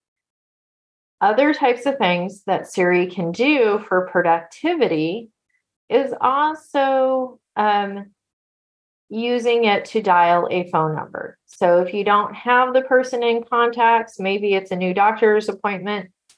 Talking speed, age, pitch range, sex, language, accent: 130 wpm, 30-49, 175-220 Hz, female, English, American